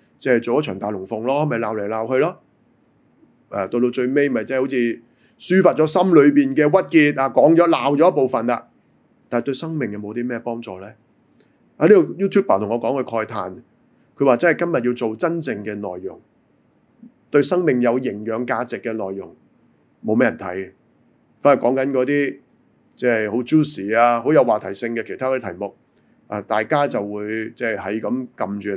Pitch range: 110-145 Hz